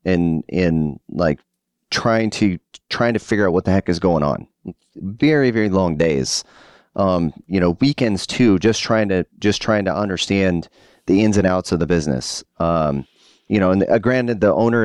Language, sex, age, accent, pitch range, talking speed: English, male, 30-49, American, 85-110 Hz, 185 wpm